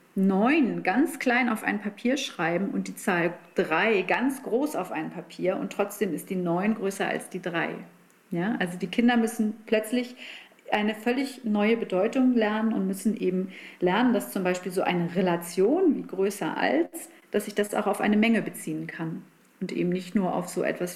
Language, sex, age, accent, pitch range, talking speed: German, female, 40-59, German, 180-230 Hz, 185 wpm